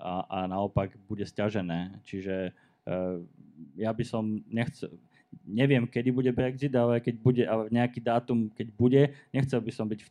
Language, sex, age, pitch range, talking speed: Slovak, male, 20-39, 105-125 Hz, 165 wpm